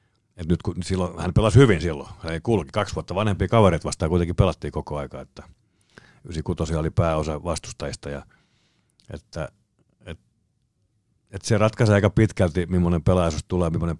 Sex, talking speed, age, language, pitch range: male, 145 wpm, 50-69, Finnish, 80-95 Hz